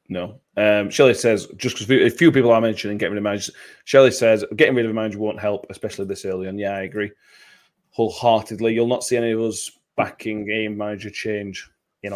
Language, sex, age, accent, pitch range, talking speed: English, male, 20-39, British, 105-140 Hz, 210 wpm